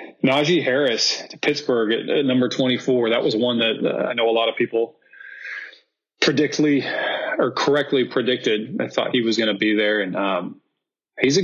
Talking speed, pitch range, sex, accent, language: 185 wpm, 110-140 Hz, male, American, English